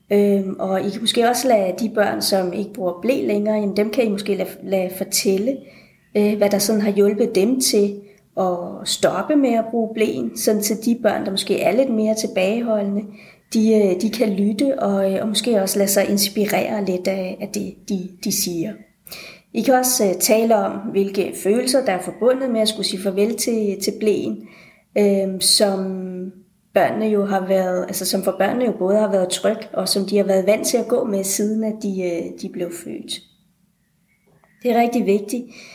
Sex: female